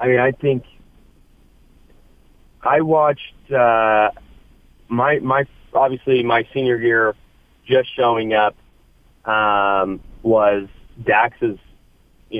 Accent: American